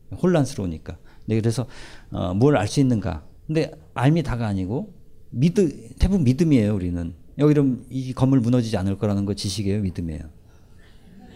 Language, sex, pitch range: Korean, male, 95-135 Hz